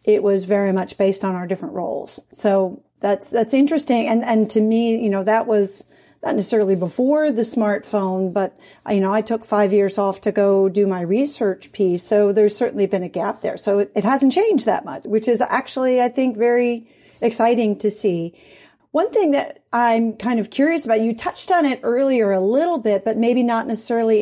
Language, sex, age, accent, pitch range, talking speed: English, female, 40-59, American, 195-235 Hz, 205 wpm